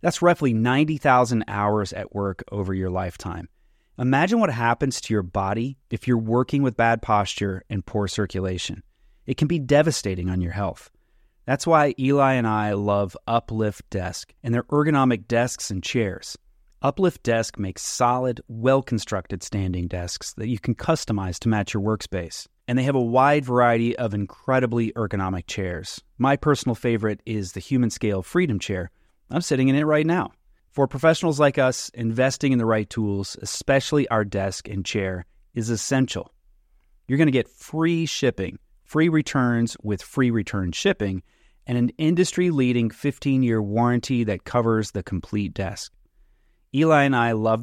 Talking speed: 160 wpm